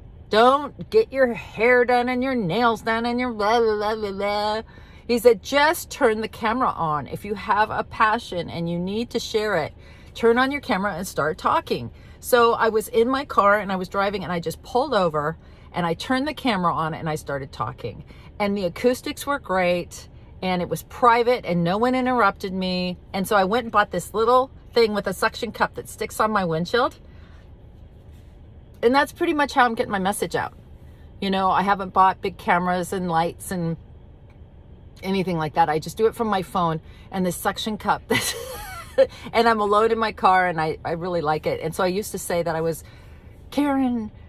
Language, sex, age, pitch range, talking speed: English, female, 40-59, 165-235 Hz, 210 wpm